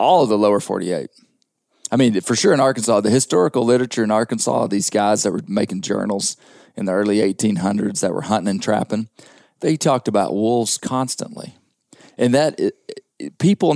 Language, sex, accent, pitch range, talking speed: English, male, American, 105-120 Hz, 170 wpm